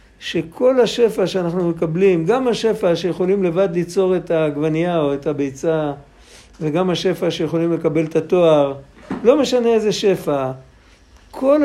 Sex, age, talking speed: male, 60-79, 130 wpm